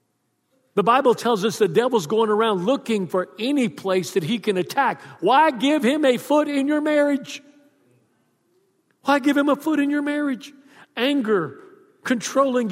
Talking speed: 160 wpm